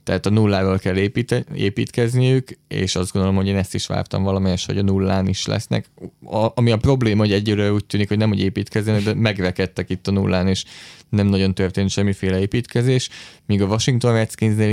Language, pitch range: Hungarian, 95-110 Hz